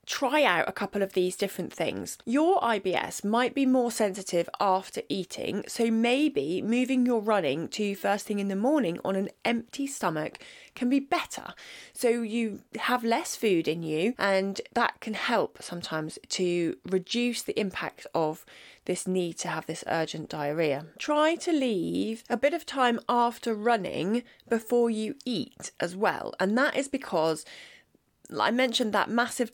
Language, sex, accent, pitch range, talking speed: English, female, British, 190-250 Hz, 165 wpm